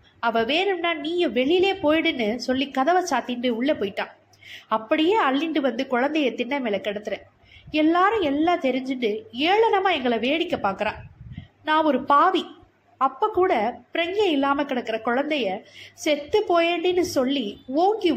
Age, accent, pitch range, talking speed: 20-39, native, 245-335 Hz, 120 wpm